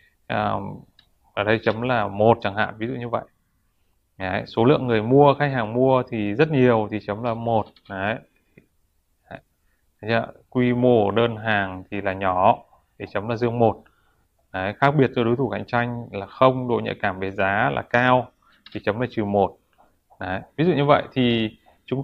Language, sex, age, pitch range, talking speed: Vietnamese, male, 20-39, 105-130 Hz, 180 wpm